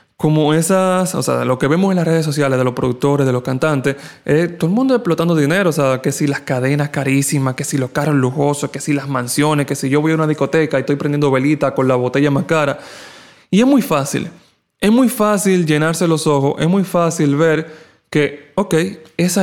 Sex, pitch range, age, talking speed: male, 145-200 Hz, 20-39, 220 wpm